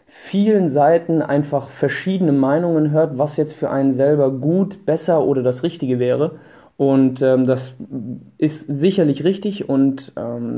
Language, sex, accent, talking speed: German, male, German, 140 wpm